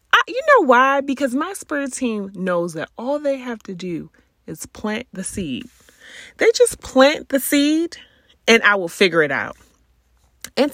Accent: American